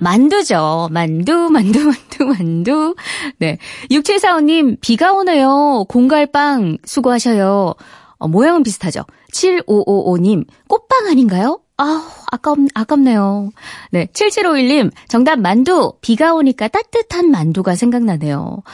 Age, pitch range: 20-39, 195-305 Hz